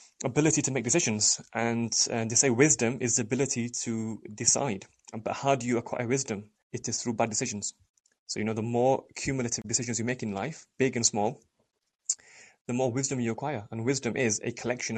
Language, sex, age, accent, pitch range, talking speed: English, male, 20-39, British, 110-130 Hz, 195 wpm